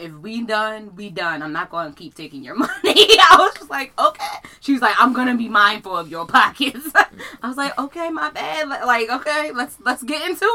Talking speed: 235 wpm